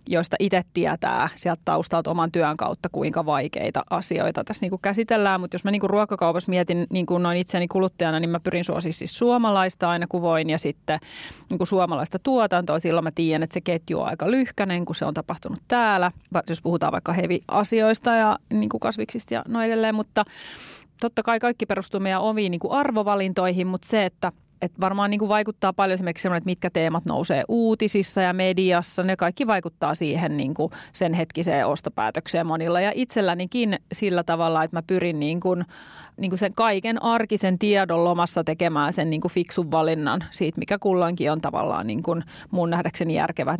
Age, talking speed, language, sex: 30-49, 180 wpm, Finnish, female